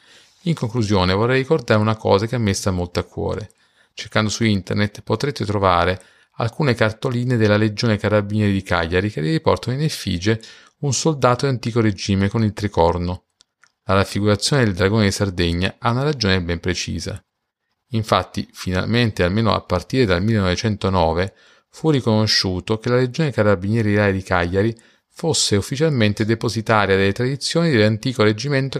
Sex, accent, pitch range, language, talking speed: male, native, 95-120 Hz, Italian, 145 wpm